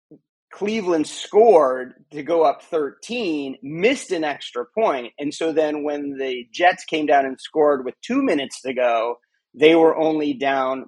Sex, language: male, English